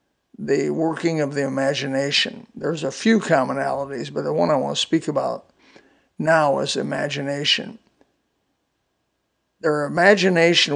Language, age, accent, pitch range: English, 60-79, American, 140-165 Hz